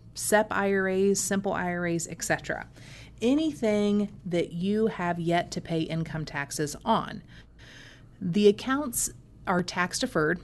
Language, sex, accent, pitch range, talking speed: English, female, American, 150-195 Hz, 115 wpm